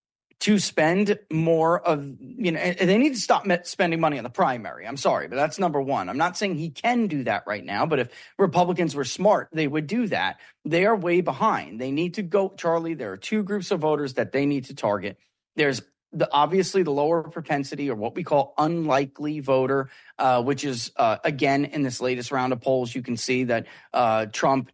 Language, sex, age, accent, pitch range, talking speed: English, male, 30-49, American, 130-175 Hz, 210 wpm